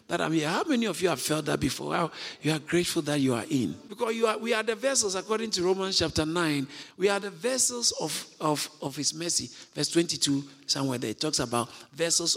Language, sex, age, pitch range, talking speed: English, male, 50-69, 150-220 Hz, 235 wpm